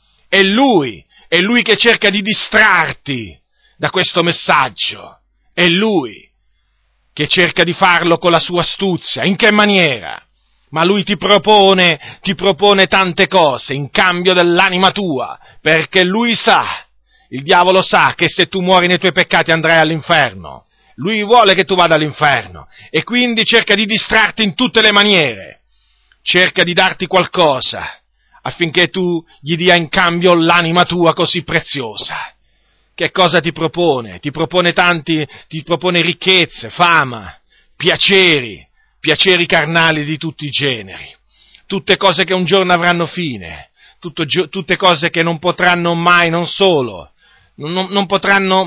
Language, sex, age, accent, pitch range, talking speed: Italian, male, 40-59, native, 165-190 Hz, 145 wpm